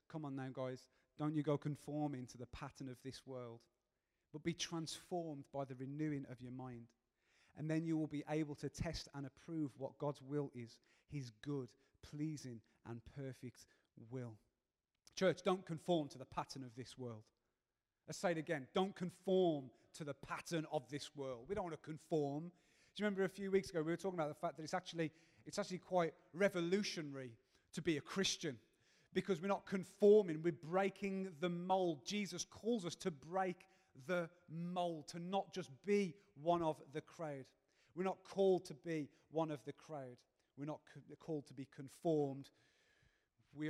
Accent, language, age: British, English, 30-49